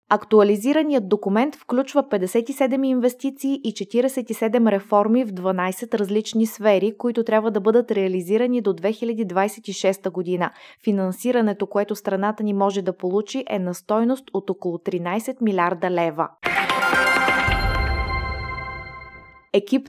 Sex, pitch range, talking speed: female, 200-230 Hz, 110 wpm